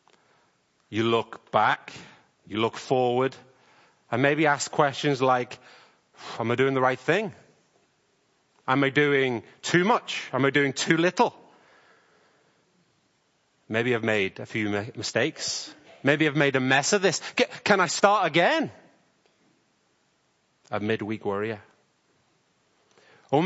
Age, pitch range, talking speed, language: 30-49, 130-200 Hz, 125 wpm, English